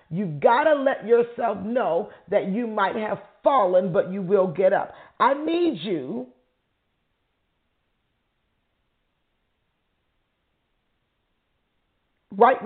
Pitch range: 185-245 Hz